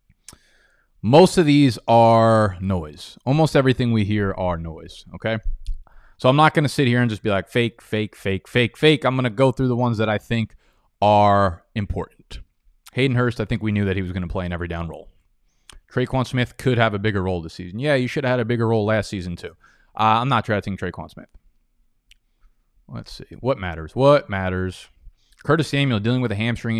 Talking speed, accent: 215 wpm, American